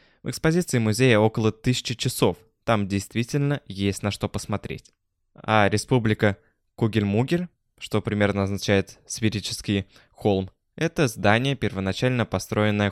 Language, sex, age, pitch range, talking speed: Russian, male, 20-39, 100-120 Hz, 115 wpm